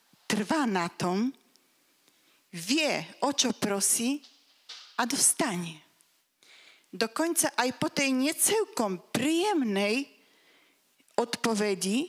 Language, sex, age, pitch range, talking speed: Slovak, female, 40-59, 210-290 Hz, 85 wpm